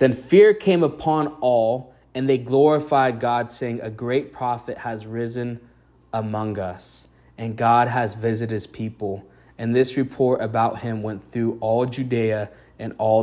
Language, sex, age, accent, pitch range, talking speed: English, male, 20-39, American, 110-125 Hz, 155 wpm